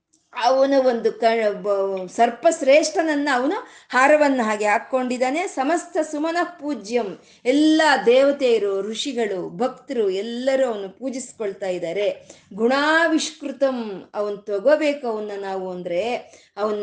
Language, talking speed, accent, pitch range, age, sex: Kannada, 95 wpm, native, 210-285 Hz, 20-39, female